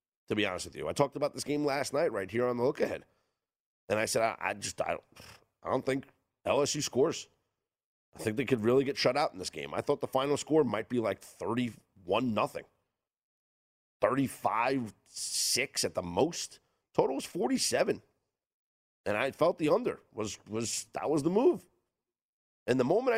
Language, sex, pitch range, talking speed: English, male, 100-145 Hz, 190 wpm